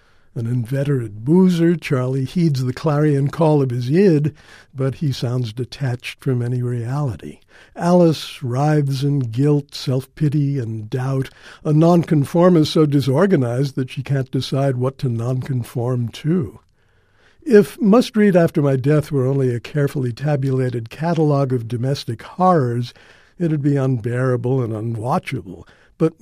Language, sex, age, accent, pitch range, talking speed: English, male, 60-79, American, 120-150 Hz, 135 wpm